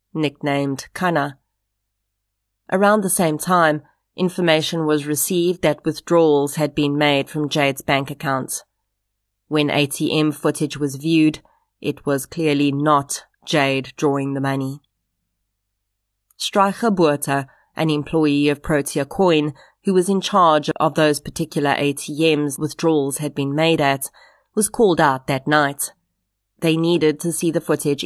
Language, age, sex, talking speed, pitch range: English, 30-49, female, 135 wpm, 140-160 Hz